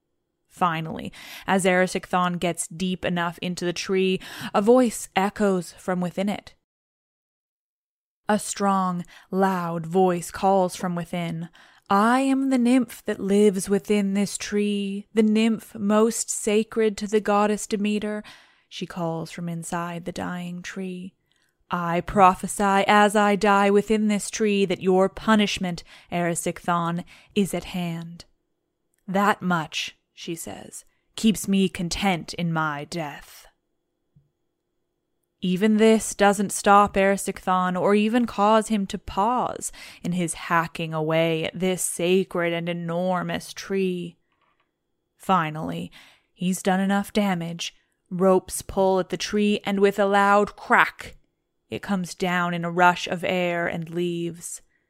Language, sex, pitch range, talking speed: English, female, 175-205 Hz, 130 wpm